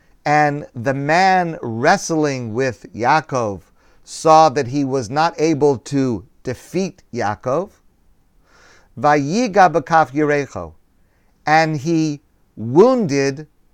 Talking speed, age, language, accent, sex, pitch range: 80 wpm, 50-69, English, American, male, 115-160 Hz